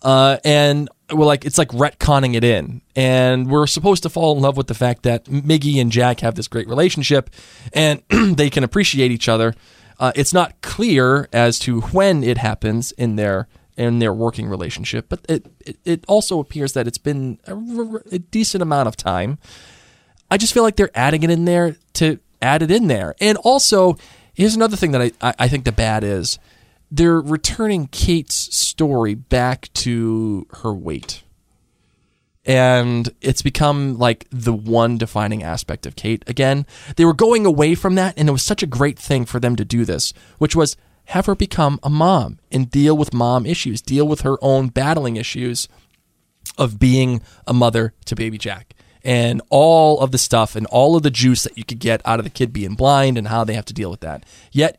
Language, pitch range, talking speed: English, 115-155 Hz, 200 wpm